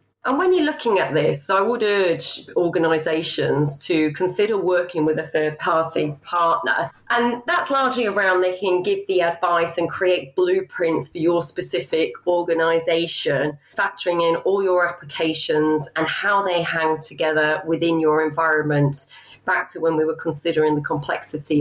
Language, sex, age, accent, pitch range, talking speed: English, female, 30-49, British, 155-185 Hz, 155 wpm